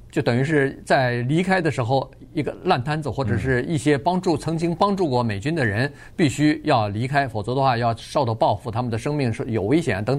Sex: male